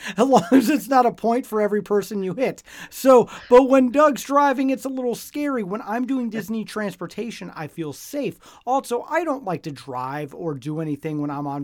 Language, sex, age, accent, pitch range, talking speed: English, male, 30-49, American, 155-215 Hz, 210 wpm